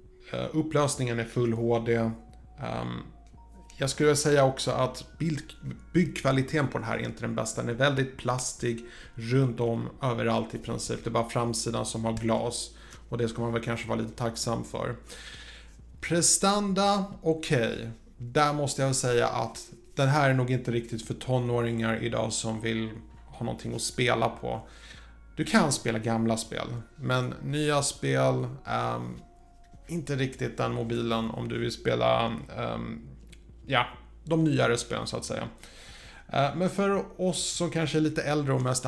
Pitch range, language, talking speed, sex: 115-140 Hz, Swedish, 160 wpm, male